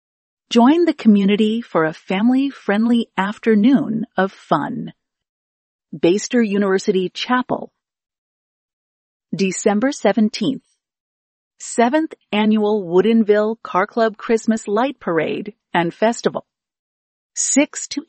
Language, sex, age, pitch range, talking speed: English, female, 40-59, 200-245 Hz, 85 wpm